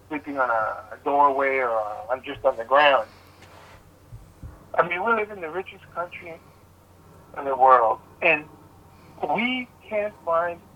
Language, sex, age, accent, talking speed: English, male, 60-79, American, 145 wpm